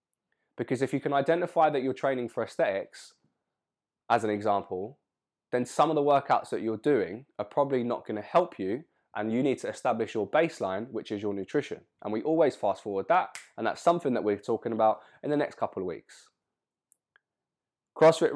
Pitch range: 110-130 Hz